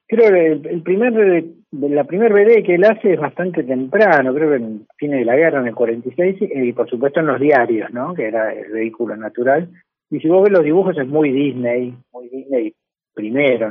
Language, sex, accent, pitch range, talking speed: Spanish, male, Argentinian, 120-160 Hz, 210 wpm